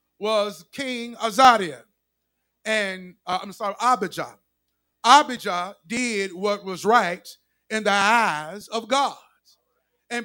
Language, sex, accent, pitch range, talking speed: English, male, American, 220-295 Hz, 110 wpm